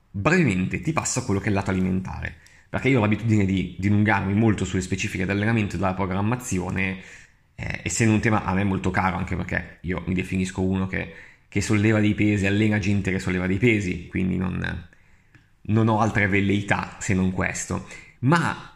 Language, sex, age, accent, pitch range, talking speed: Italian, male, 20-39, native, 95-115 Hz, 190 wpm